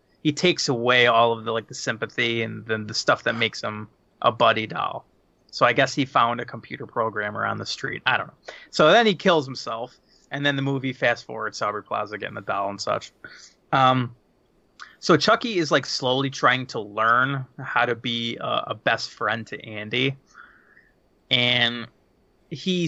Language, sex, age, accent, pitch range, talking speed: English, male, 20-39, American, 120-150 Hz, 185 wpm